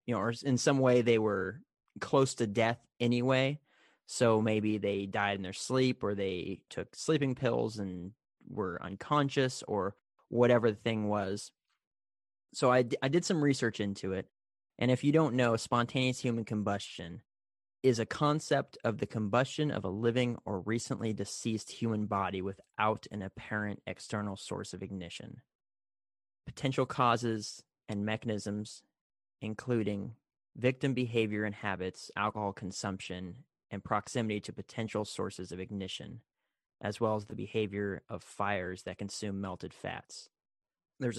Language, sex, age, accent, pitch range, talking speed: English, male, 30-49, American, 100-125 Hz, 145 wpm